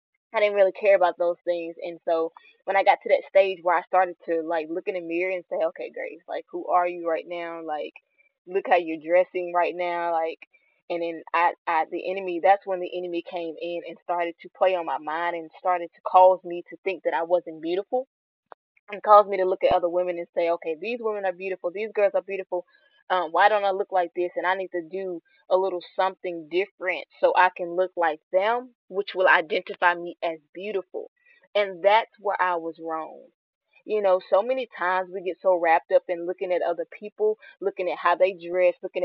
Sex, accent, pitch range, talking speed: female, American, 175-205 Hz, 225 wpm